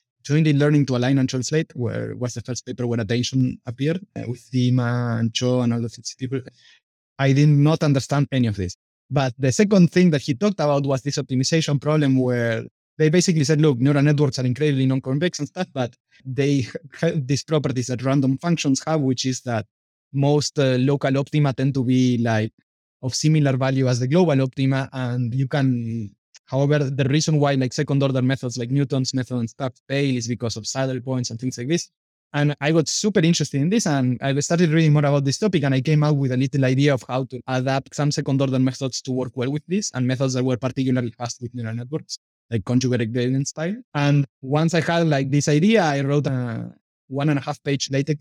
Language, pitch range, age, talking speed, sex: English, 125-145 Hz, 20-39, 210 wpm, male